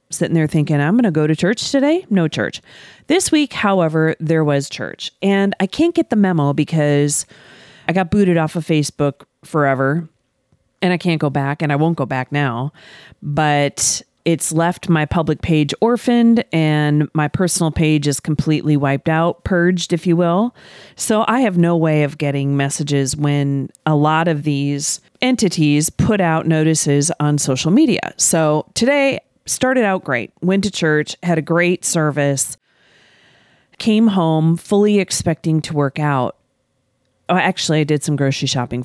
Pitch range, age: 145-175 Hz, 40-59